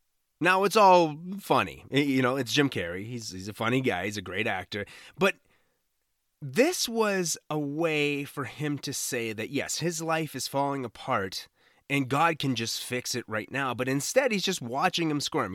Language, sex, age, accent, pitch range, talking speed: English, male, 30-49, American, 115-160 Hz, 190 wpm